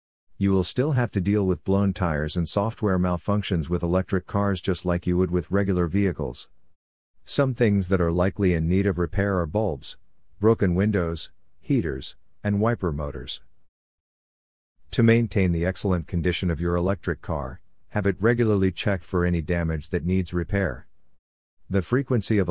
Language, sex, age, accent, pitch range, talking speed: English, male, 50-69, American, 85-100 Hz, 165 wpm